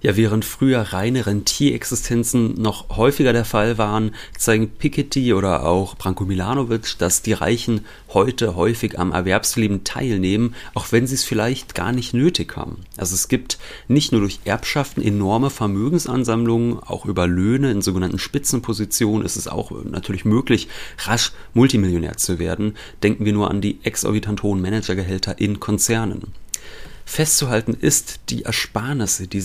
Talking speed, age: 145 wpm, 30-49